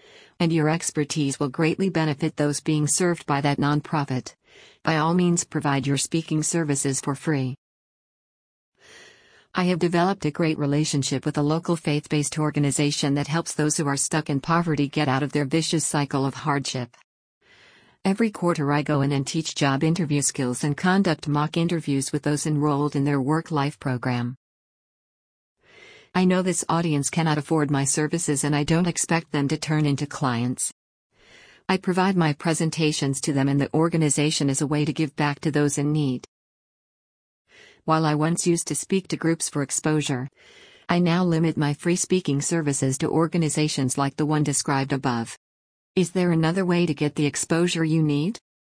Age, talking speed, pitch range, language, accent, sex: 50-69, 175 wpm, 140-165 Hz, English, American, female